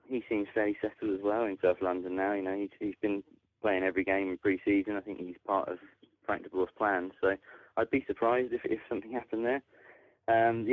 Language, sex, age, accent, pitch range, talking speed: English, male, 30-49, British, 90-115 Hz, 220 wpm